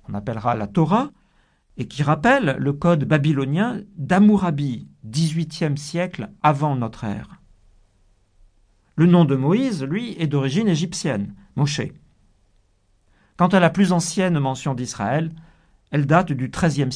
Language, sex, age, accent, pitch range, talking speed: French, male, 50-69, French, 105-170 Hz, 125 wpm